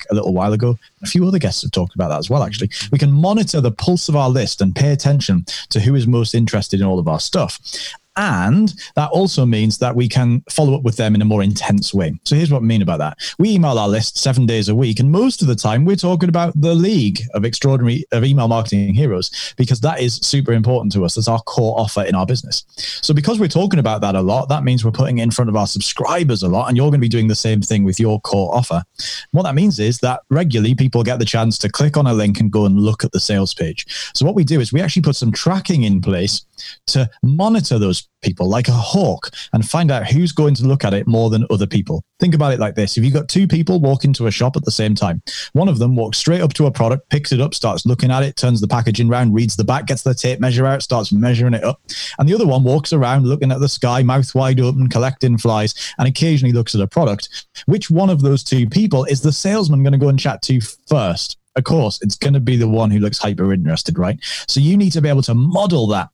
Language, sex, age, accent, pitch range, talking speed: English, male, 30-49, British, 110-145 Hz, 270 wpm